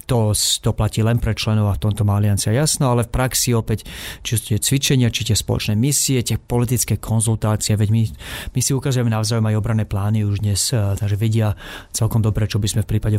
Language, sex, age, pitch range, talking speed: Slovak, male, 30-49, 105-120 Hz, 215 wpm